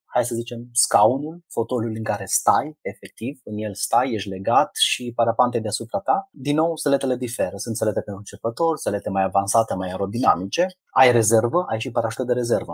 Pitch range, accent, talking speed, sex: 100-130 Hz, native, 180 wpm, male